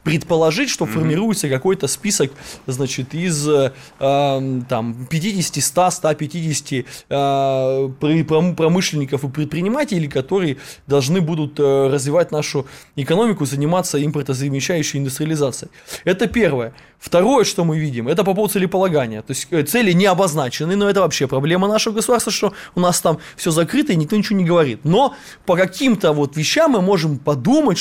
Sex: male